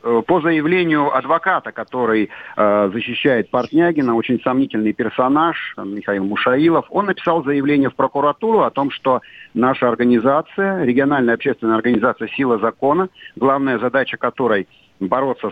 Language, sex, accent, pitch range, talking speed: Russian, male, native, 105-145 Hz, 120 wpm